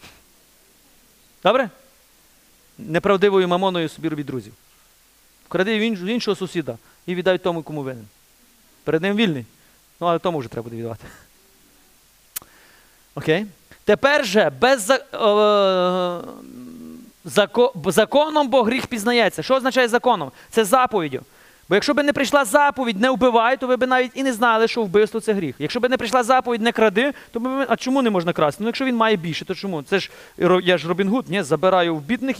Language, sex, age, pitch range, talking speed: Ukrainian, male, 30-49, 165-245 Hz, 170 wpm